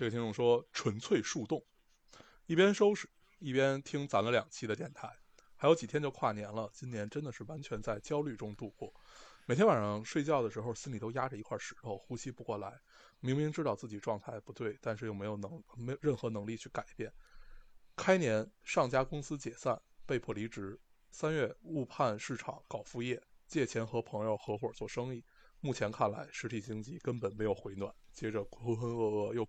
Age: 20-39